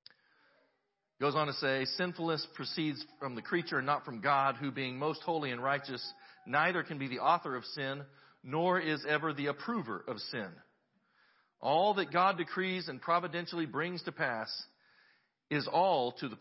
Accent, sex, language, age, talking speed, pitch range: American, male, English, 50-69, 170 wpm, 125-170 Hz